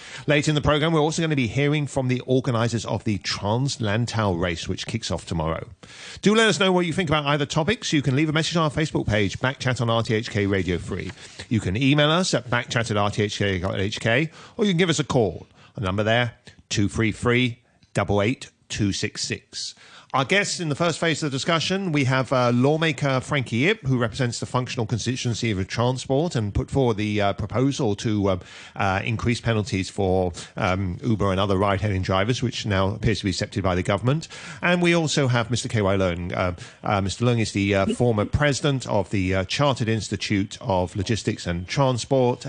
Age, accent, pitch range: 40-59, British, 100-140 Hz